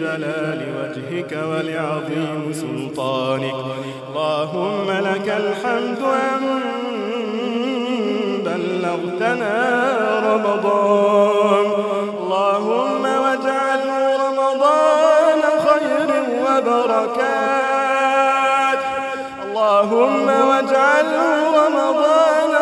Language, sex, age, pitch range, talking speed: English, male, 30-49, 165-265 Hz, 50 wpm